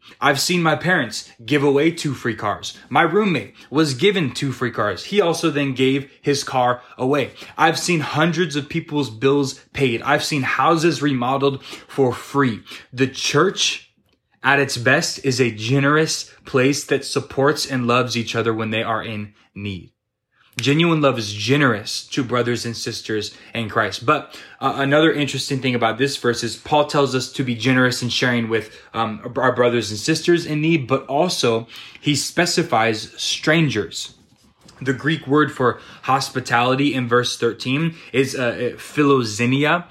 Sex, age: male, 20-39